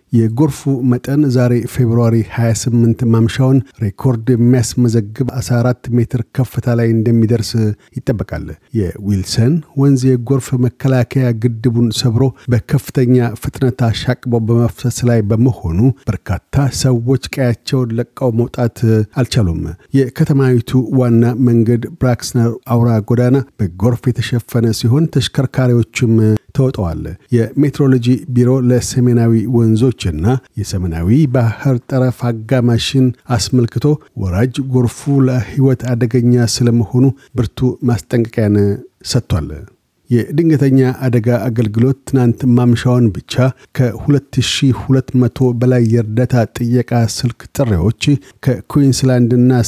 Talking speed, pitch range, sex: 90 wpm, 115-130 Hz, male